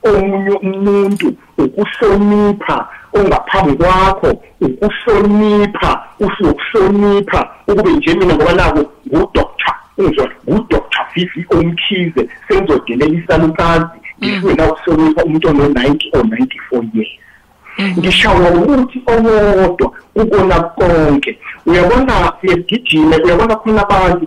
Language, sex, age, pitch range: English, male, 50-69, 165-225 Hz